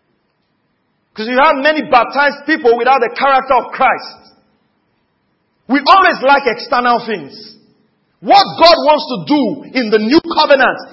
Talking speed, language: 130 wpm, English